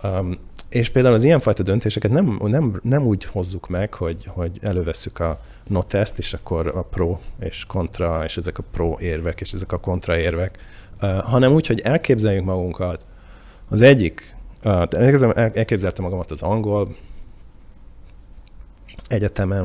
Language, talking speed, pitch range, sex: Hungarian, 140 wpm, 85-105 Hz, male